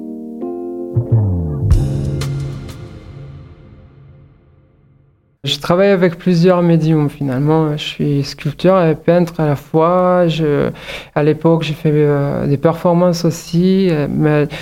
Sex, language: male, French